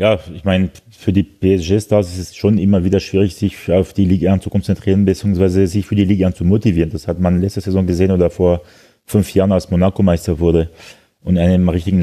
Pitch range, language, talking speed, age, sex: 90-100 Hz, German, 225 wpm, 30-49, male